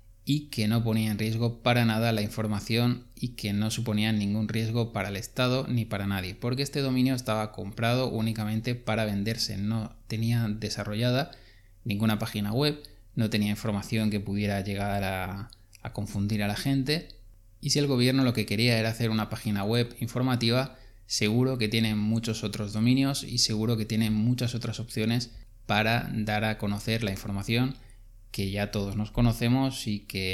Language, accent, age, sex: Spanish, Spanish, 20-39, male